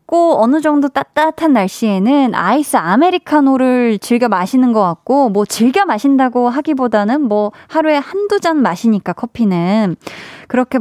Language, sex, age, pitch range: Korean, female, 20-39, 200-285 Hz